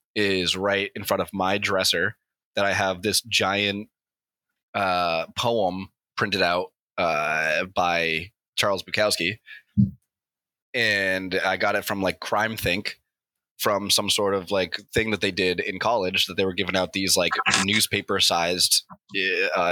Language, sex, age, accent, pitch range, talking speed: English, male, 20-39, American, 95-120 Hz, 145 wpm